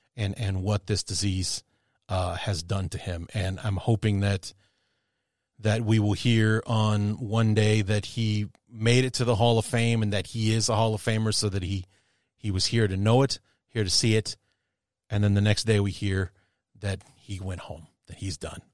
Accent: American